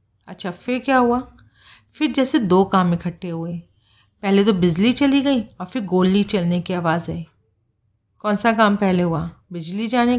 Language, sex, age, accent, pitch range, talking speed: Hindi, female, 40-59, native, 175-235 Hz, 170 wpm